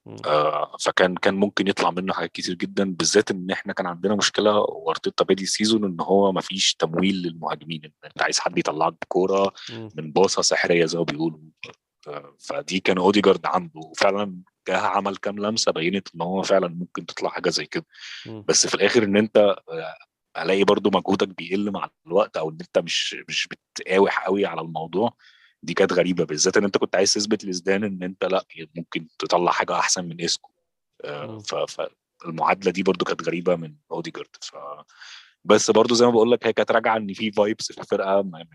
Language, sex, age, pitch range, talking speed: Arabic, male, 30-49, 85-105 Hz, 175 wpm